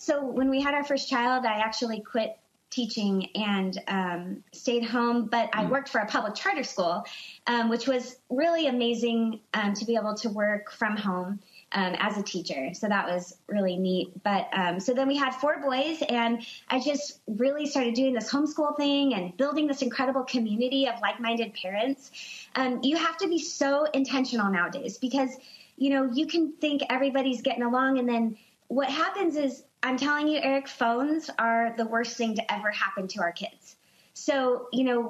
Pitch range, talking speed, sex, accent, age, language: 220-275 Hz, 190 wpm, female, American, 20-39, English